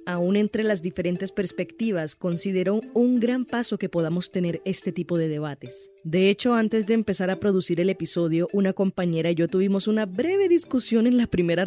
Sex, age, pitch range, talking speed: female, 20-39, 165-200 Hz, 185 wpm